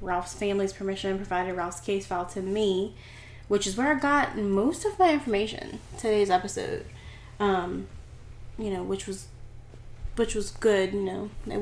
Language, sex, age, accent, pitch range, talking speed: English, female, 10-29, American, 185-210 Hz, 160 wpm